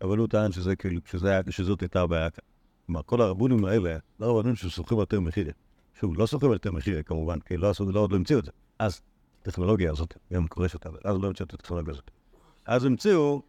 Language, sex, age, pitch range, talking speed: Hebrew, male, 50-69, 90-125 Hz, 200 wpm